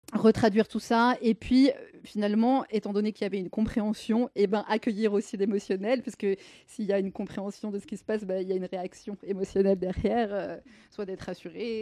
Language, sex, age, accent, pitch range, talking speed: French, female, 20-39, French, 190-220 Hz, 220 wpm